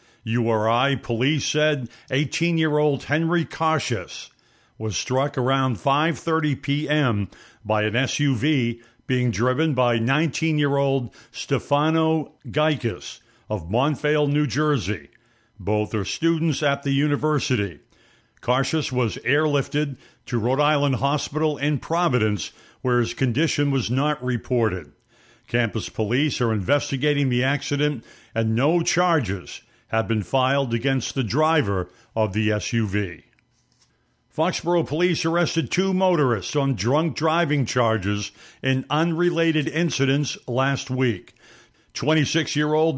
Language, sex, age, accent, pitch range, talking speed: English, male, 60-79, American, 115-150 Hz, 110 wpm